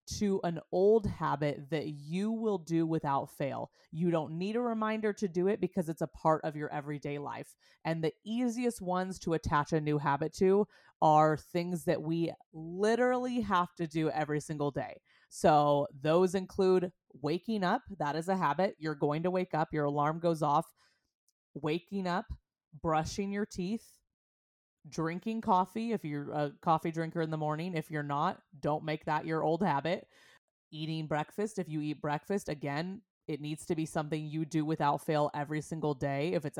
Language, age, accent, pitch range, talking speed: English, 20-39, American, 150-185 Hz, 180 wpm